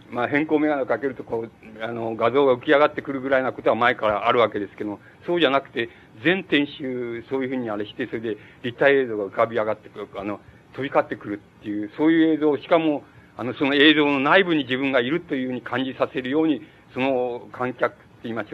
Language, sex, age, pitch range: Japanese, male, 50-69, 115-150 Hz